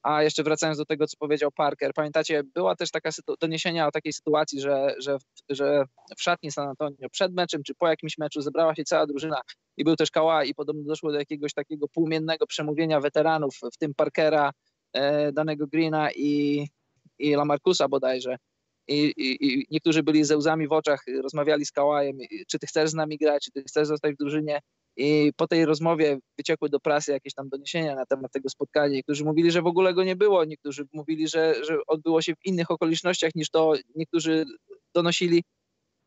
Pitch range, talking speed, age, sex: 145-160 Hz, 195 wpm, 20-39, male